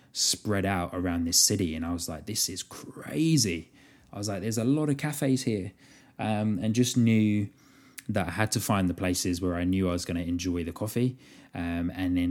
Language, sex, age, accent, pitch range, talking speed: English, male, 20-39, British, 90-110 Hz, 220 wpm